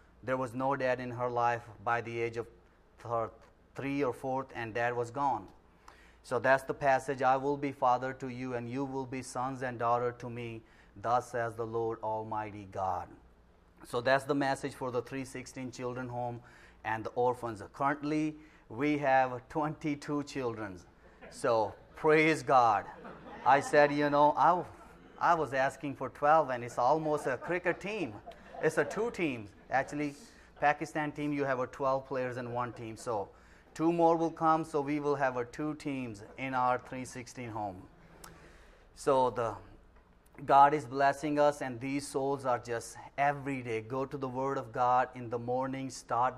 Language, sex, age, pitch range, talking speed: English, male, 30-49, 120-140 Hz, 170 wpm